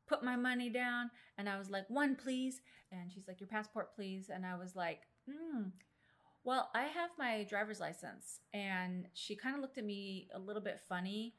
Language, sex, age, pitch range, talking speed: English, female, 30-49, 185-235 Hz, 200 wpm